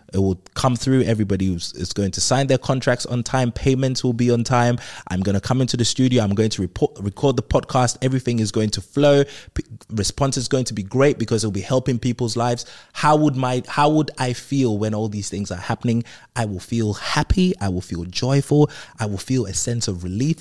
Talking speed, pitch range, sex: 220 wpm, 100-125 Hz, male